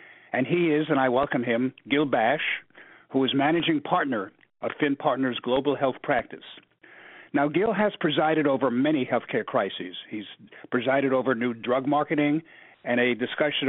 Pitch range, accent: 125-150 Hz, American